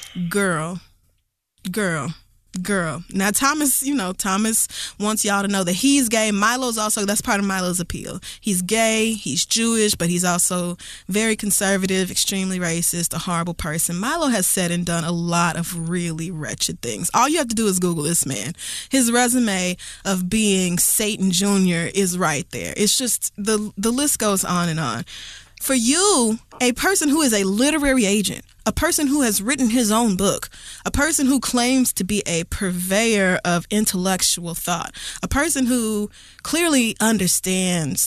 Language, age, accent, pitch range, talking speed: English, 20-39, American, 180-230 Hz, 170 wpm